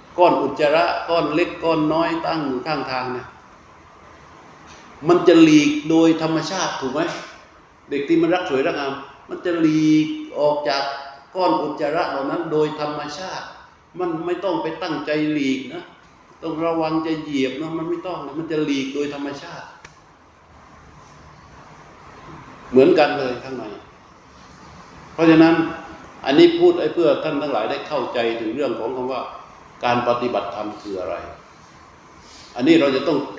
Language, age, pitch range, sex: Thai, 60-79, 125-160 Hz, male